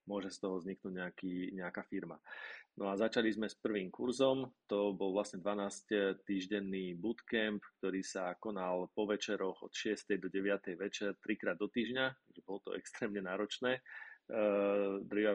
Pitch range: 95-110 Hz